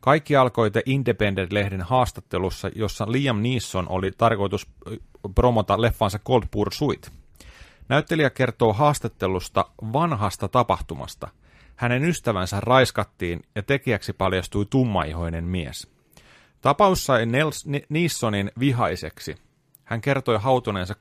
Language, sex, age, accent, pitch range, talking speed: Finnish, male, 30-49, native, 95-130 Hz, 95 wpm